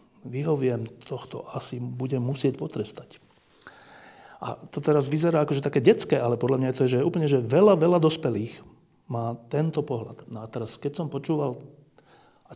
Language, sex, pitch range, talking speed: Slovak, male, 115-150 Hz, 165 wpm